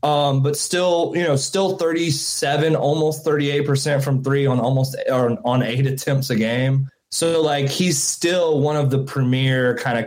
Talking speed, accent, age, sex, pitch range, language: 185 wpm, American, 20-39, male, 125-160 Hz, English